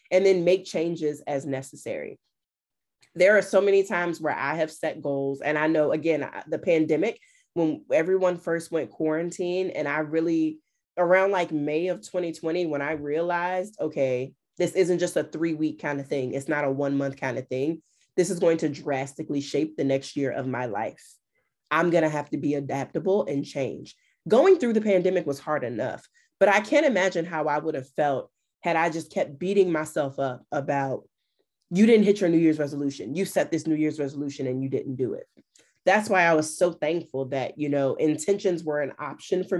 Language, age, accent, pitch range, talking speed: English, 20-39, American, 145-190 Hz, 200 wpm